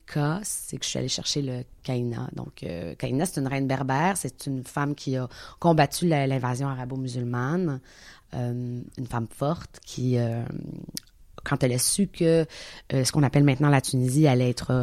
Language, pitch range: French, 130-155 Hz